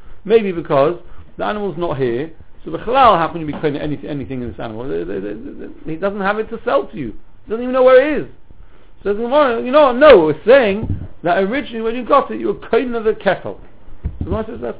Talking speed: 245 wpm